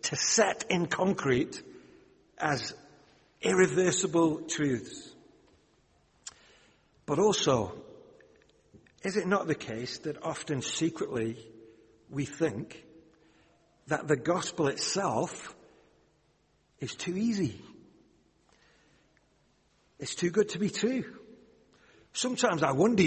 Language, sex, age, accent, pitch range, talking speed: English, male, 60-79, British, 150-205 Hz, 90 wpm